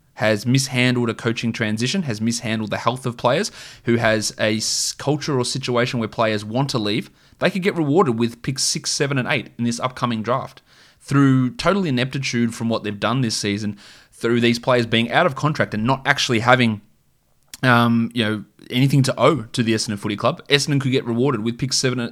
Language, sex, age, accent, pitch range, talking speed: English, male, 20-39, Australian, 110-130 Hz, 200 wpm